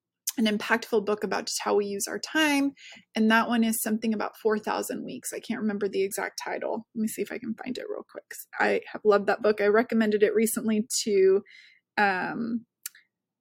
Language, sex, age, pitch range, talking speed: English, female, 20-39, 210-245 Hz, 200 wpm